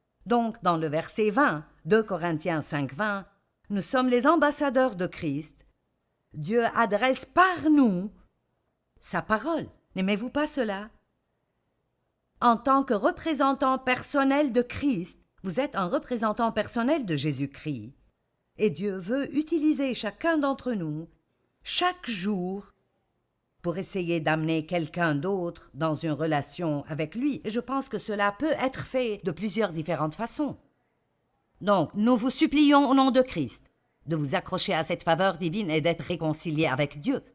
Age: 50-69